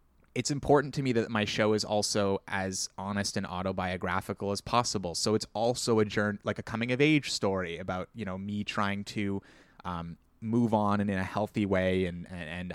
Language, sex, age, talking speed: English, male, 20-39, 200 wpm